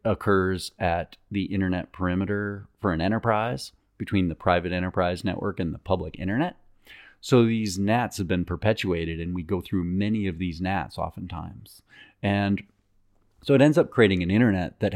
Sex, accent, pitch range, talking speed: male, American, 90-105 Hz, 165 wpm